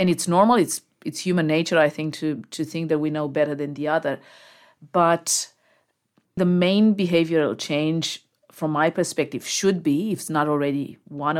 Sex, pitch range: female, 150-175 Hz